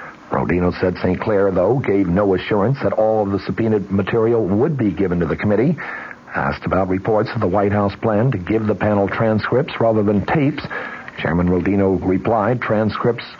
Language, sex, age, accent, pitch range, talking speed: English, male, 60-79, American, 100-115 Hz, 180 wpm